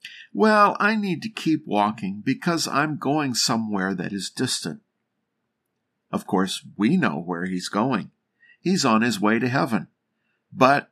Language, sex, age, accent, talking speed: English, male, 50-69, American, 150 wpm